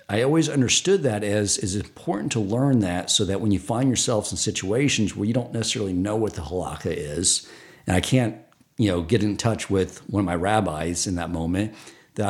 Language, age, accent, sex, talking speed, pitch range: English, 50-69, American, male, 215 wpm, 95-120 Hz